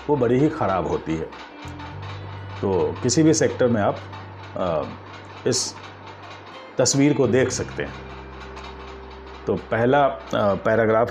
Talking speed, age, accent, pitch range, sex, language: 115 wpm, 50-69, native, 95-130 Hz, male, Hindi